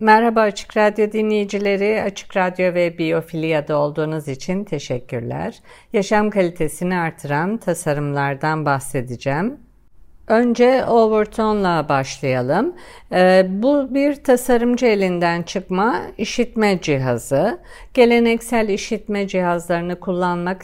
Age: 50-69